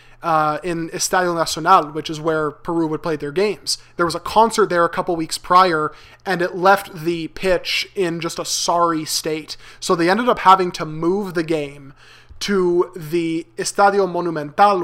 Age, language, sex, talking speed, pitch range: 20-39, English, male, 180 wpm, 165-185 Hz